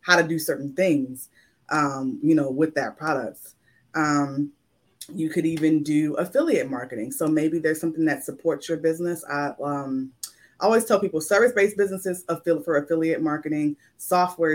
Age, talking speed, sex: 20-39, 155 wpm, female